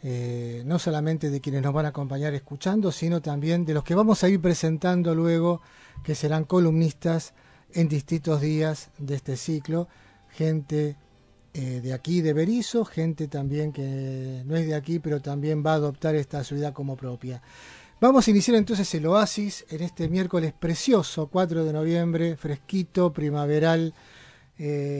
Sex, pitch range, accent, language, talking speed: male, 150-175 Hz, Argentinian, Spanish, 160 wpm